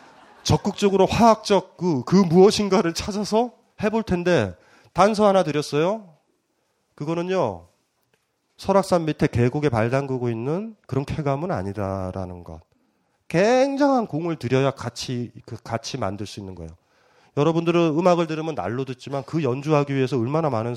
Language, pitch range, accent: Korean, 115-160 Hz, native